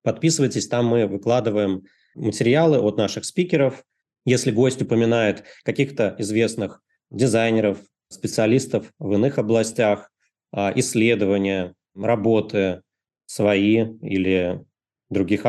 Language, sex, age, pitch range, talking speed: Russian, male, 20-39, 100-125 Hz, 90 wpm